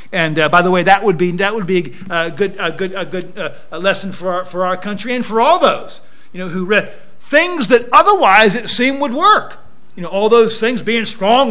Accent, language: American, English